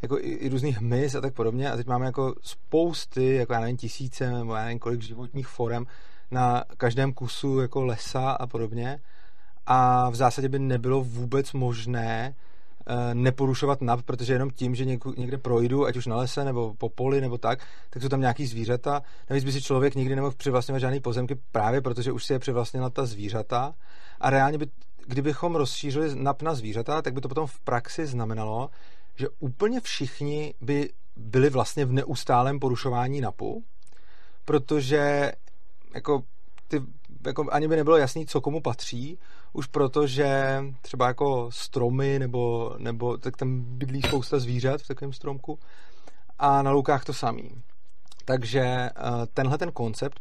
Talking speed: 160 wpm